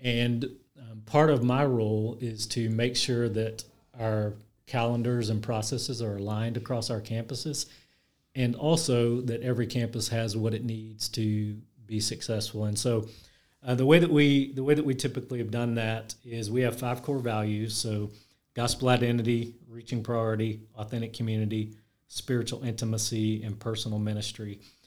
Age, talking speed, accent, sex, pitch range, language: 30-49, 150 wpm, American, male, 110-125 Hz, English